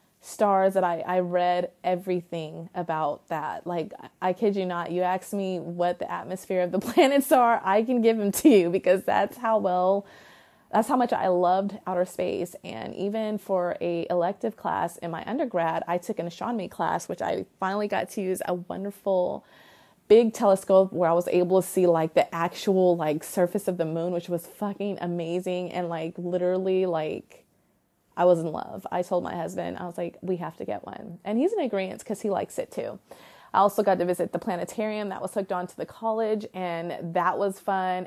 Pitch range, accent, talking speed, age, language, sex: 175-205 Hz, American, 205 wpm, 20-39, English, female